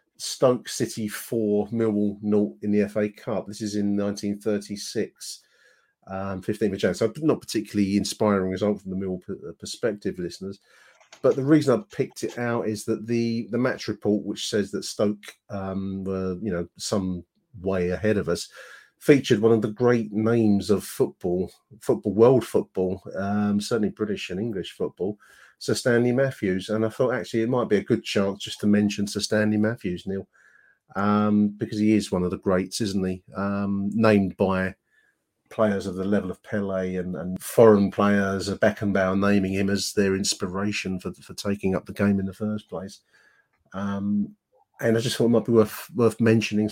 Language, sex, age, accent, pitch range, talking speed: English, male, 40-59, British, 95-110 Hz, 180 wpm